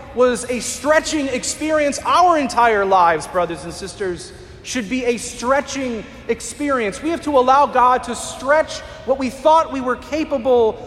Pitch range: 230-295 Hz